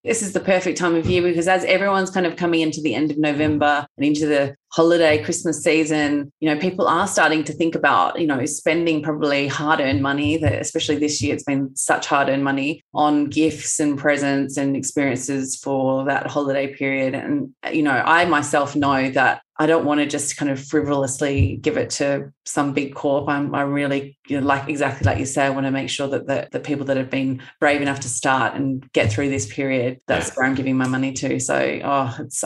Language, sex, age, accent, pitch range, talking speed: English, female, 20-39, Australian, 140-160 Hz, 220 wpm